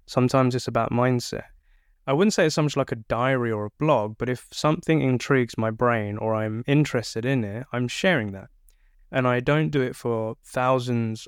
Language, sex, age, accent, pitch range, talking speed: English, male, 20-39, British, 115-135 Hz, 195 wpm